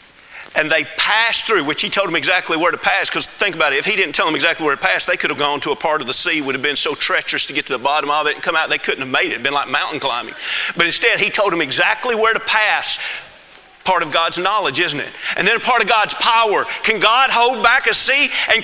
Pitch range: 190-290 Hz